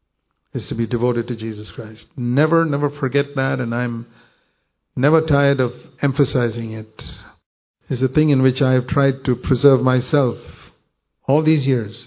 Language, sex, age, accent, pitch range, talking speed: English, male, 50-69, Indian, 125-145 Hz, 170 wpm